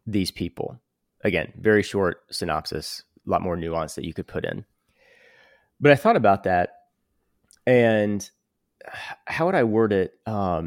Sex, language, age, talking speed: male, English, 30-49, 150 wpm